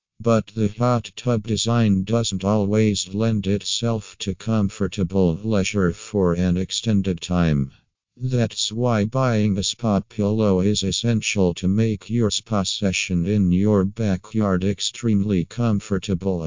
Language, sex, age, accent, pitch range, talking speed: English, male, 50-69, American, 95-110 Hz, 125 wpm